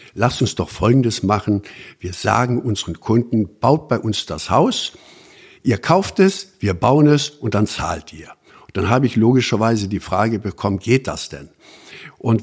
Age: 60-79